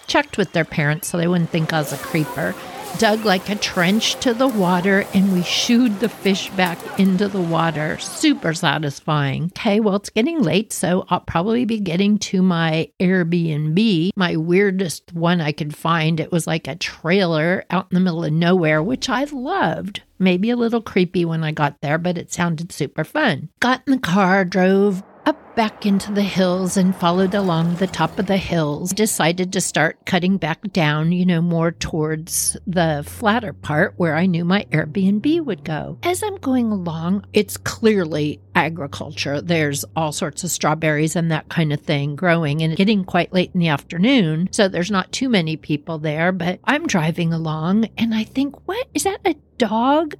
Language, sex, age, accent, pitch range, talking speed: English, female, 60-79, American, 165-210 Hz, 190 wpm